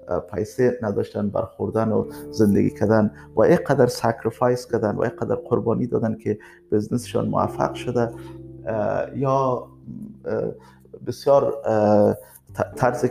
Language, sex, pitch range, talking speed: Persian, male, 110-130 Hz, 105 wpm